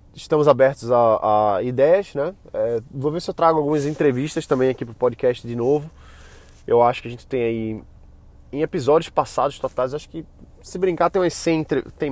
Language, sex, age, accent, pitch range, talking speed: Portuguese, male, 20-39, Brazilian, 115-150 Hz, 195 wpm